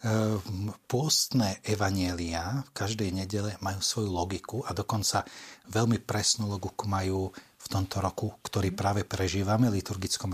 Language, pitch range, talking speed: Slovak, 95-125 Hz, 120 wpm